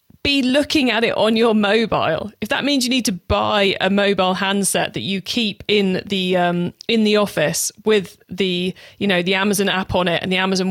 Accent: British